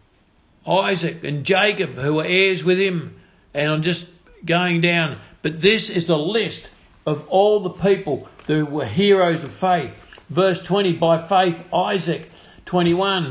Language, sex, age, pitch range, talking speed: English, male, 50-69, 165-190 Hz, 150 wpm